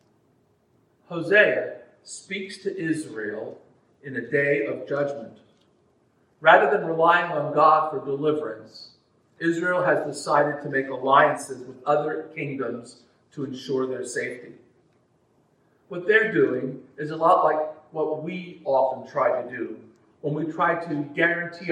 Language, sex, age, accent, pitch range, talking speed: English, male, 50-69, American, 130-160 Hz, 130 wpm